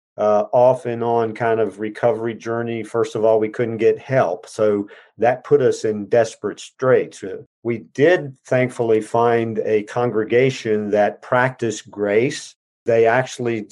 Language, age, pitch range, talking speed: English, 50-69, 105-125 Hz, 140 wpm